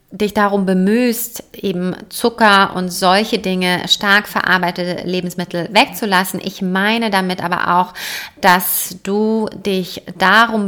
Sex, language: female, German